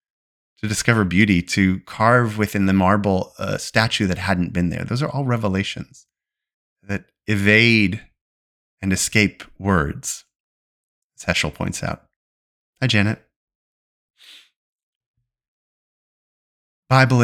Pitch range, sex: 90-110 Hz, male